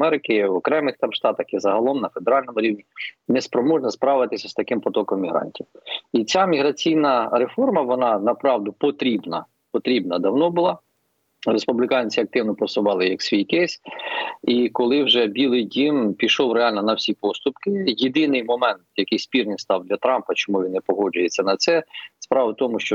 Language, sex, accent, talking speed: Ukrainian, male, native, 160 wpm